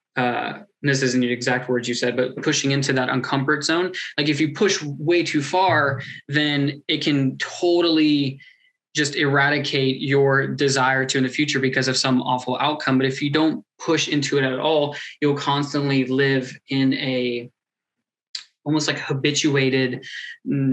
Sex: male